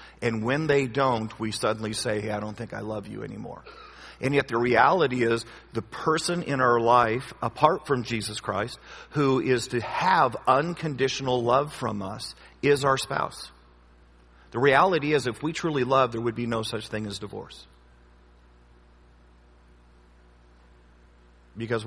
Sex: male